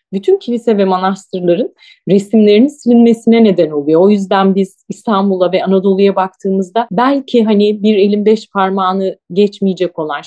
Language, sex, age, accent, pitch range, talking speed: Turkish, female, 30-49, native, 190-230 Hz, 135 wpm